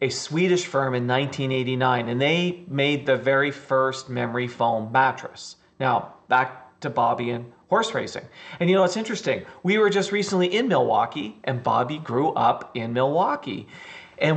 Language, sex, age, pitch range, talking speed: English, male, 40-59, 125-165 Hz, 165 wpm